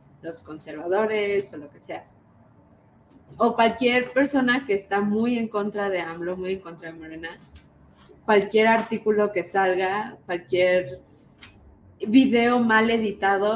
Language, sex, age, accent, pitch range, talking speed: Spanish, female, 20-39, Mexican, 185-220 Hz, 130 wpm